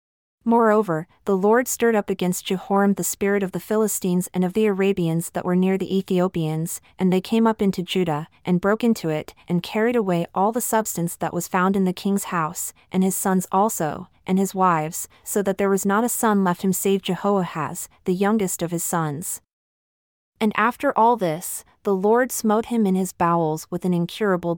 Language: English